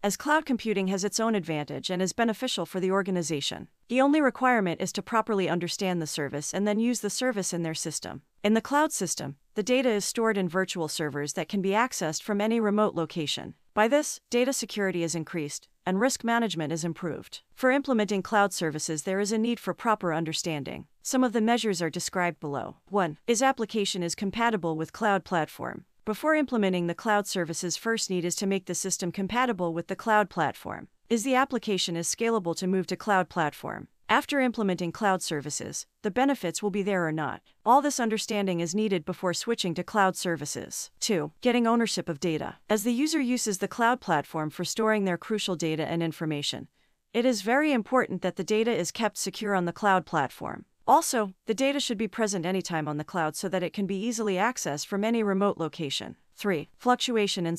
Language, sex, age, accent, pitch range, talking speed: Turkish, female, 40-59, American, 170-225 Hz, 200 wpm